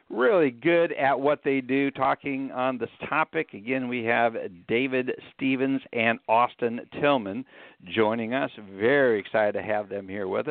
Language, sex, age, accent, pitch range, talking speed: English, male, 60-79, American, 110-155 Hz, 155 wpm